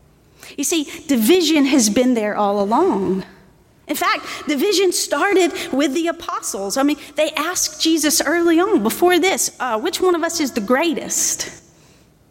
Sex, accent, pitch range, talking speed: female, American, 235-320 Hz, 155 wpm